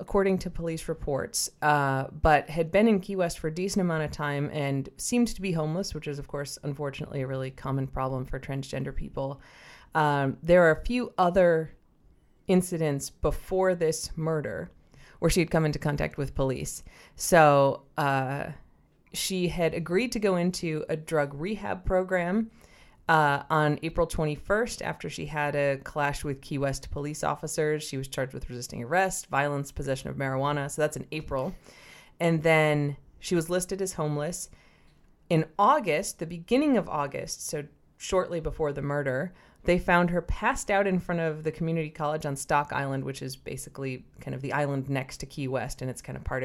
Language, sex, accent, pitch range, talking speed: English, female, American, 140-175 Hz, 180 wpm